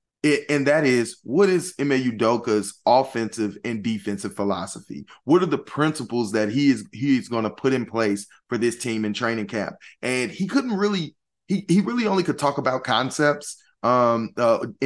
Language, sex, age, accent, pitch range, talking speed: English, male, 20-39, American, 115-140 Hz, 180 wpm